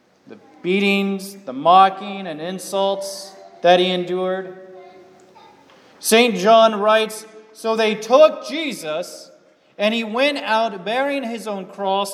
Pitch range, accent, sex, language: 185-230 Hz, American, male, English